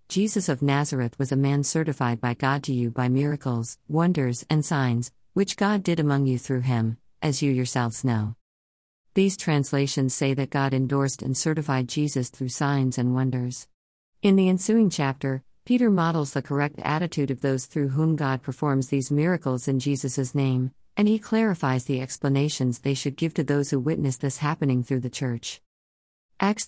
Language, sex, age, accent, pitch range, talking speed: English, female, 50-69, American, 130-170 Hz, 175 wpm